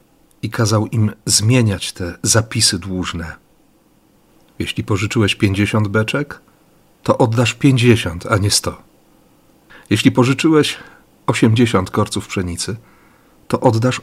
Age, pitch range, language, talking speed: 40-59, 100-120 Hz, Polish, 105 wpm